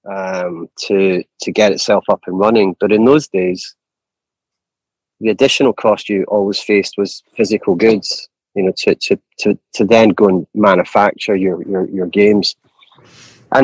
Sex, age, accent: male, 30-49, British